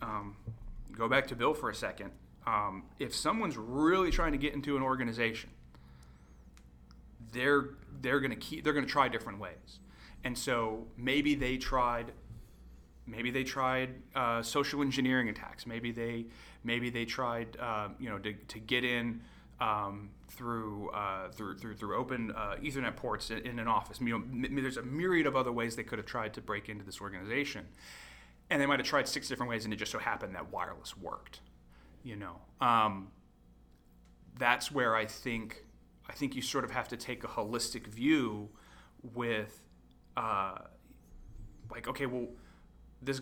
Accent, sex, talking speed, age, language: American, male, 170 wpm, 30-49, English